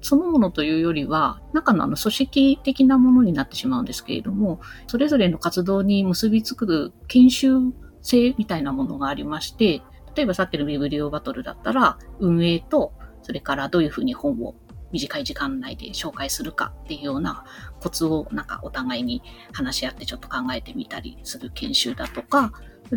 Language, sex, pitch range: Japanese, female, 170-255 Hz